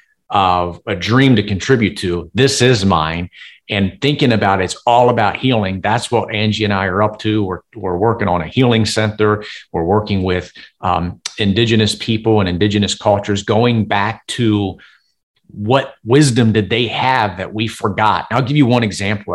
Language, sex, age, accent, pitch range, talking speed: English, male, 40-59, American, 100-115 Hz, 175 wpm